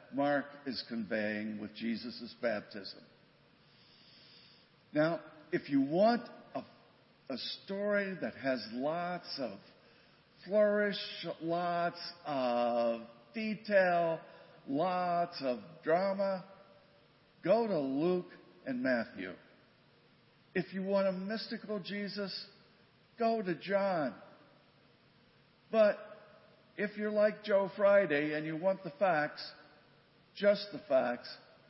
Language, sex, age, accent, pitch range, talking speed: English, male, 50-69, American, 140-205 Hz, 100 wpm